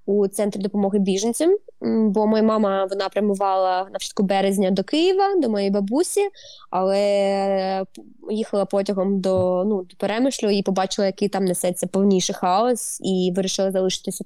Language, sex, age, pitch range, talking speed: Ukrainian, female, 20-39, 185-215 Hz, 140 wpm